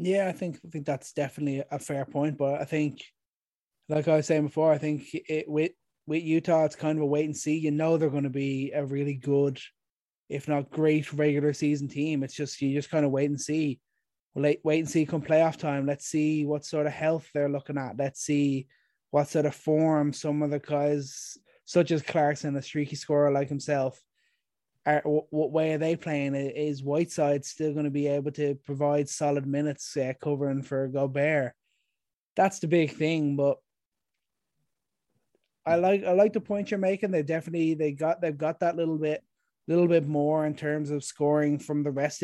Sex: male